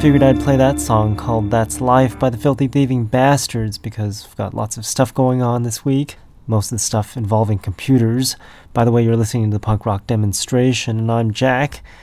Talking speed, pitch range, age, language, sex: 215 wpm, 105-125 Hz, 30-49, English, male